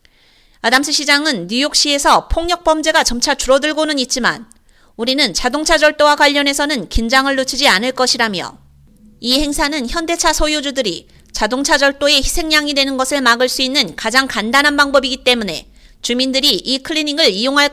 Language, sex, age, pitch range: Korean, female, 30-49, 255-305 Hz